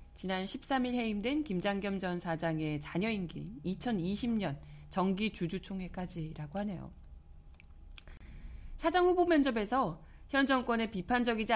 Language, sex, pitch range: Korean, female, 165-235 Hz